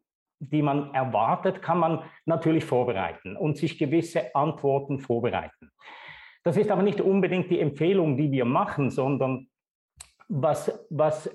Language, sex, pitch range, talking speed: German, male, 155-195 Hz, 130 wpm